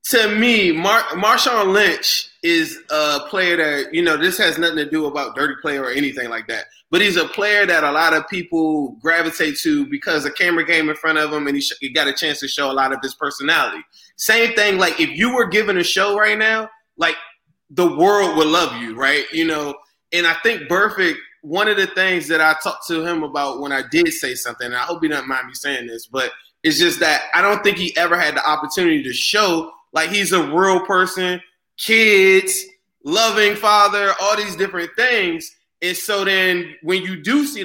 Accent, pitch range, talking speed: American, 160-210 Hz, 220 wpm